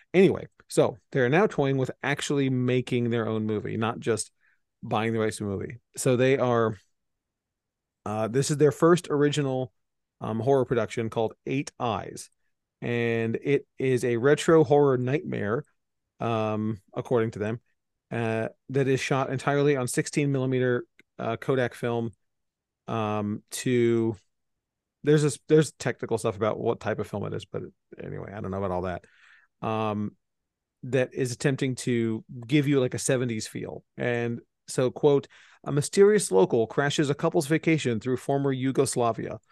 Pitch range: 115-145 Hz